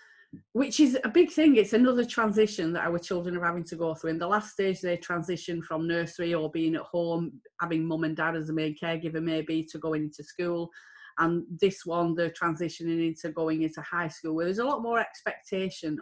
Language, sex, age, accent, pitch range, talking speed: English, female, 30-49, British, 160-205 Hz, 225 wpm